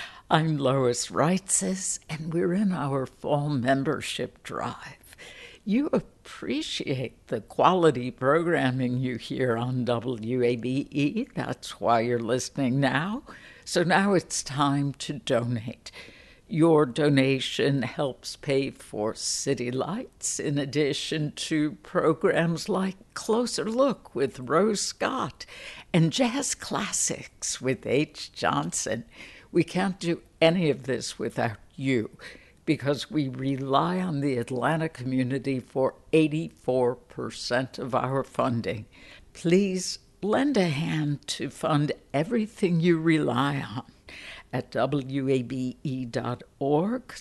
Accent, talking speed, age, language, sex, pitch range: American, 110 wpm, 60-79, English, female, 130-170 Hz